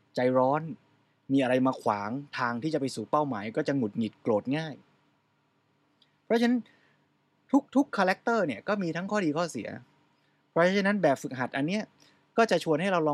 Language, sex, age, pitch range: Thai, male, 20-39, 130-180 Hz